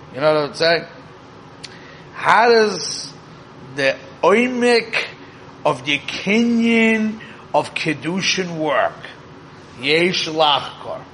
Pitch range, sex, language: 155-210 Hz, male, English